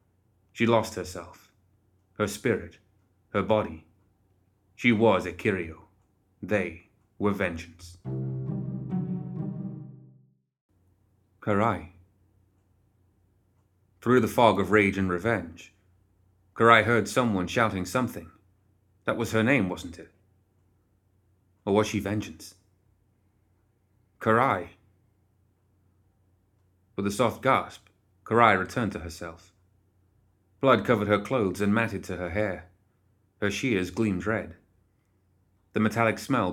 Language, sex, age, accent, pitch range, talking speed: English, male, 30-49, British, 95-105 Hz, 100 wpm